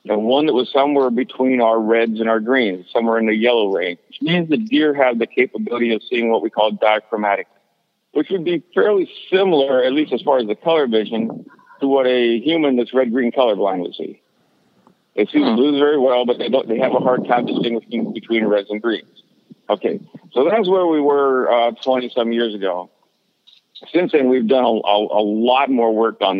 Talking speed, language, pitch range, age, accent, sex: 205 wpm, English, 110-130 Hz, 60-79, American, male